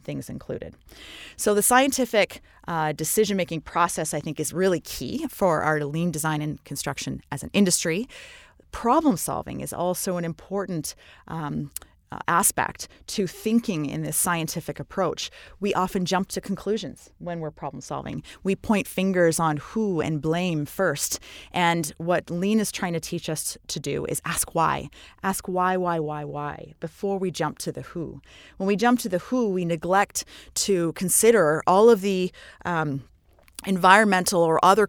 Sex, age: female, 20-39